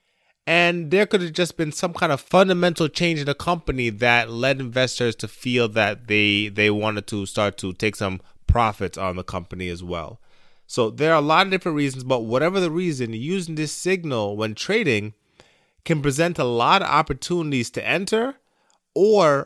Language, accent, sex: English, American, male